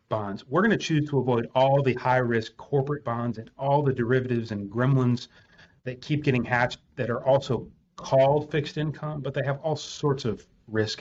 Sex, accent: male, American